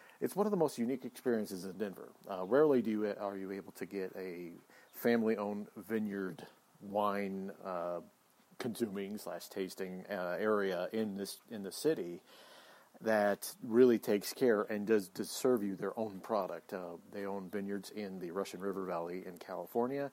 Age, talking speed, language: 40-59, 165 wpm, English